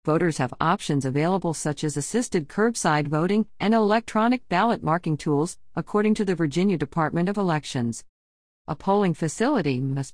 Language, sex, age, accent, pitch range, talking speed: English, female, 50-69, American, 140-185 Hz, 150 wpm